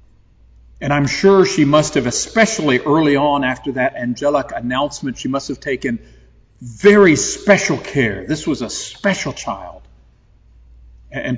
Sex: male